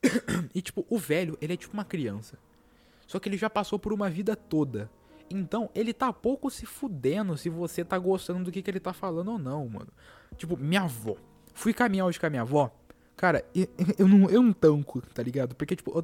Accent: Brazilian